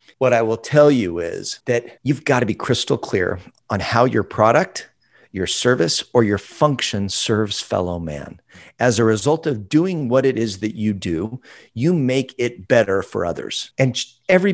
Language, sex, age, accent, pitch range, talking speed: English, male, 50-69, American, 105-135 Hz, 180 wpm